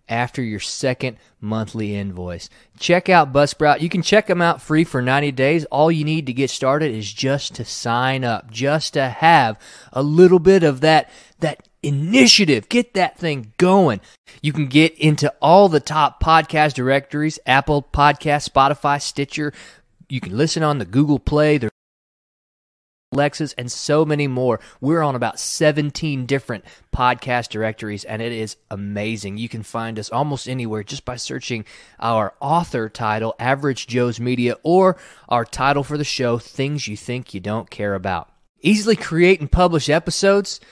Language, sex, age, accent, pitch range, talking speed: English, male, 20-39, American, 120-155 Hz, 165 wpm